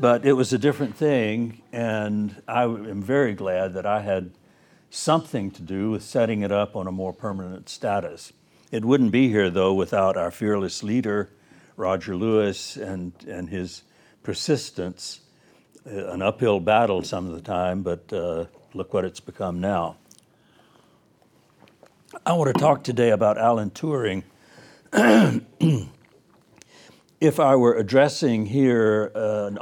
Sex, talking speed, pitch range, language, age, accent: male, 140 wpm, 95-115 Hz, English, 60-79, American